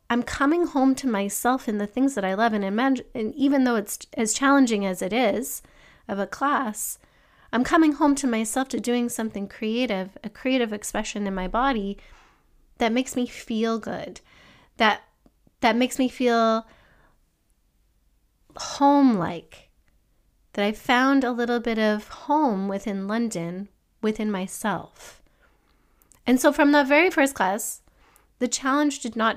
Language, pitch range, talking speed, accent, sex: English, 200-255 Hz, 150 wpm, American, female